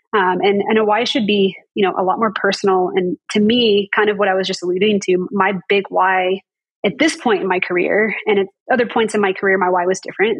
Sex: female